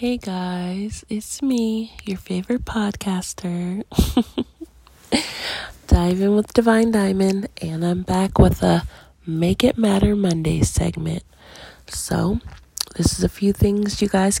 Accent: American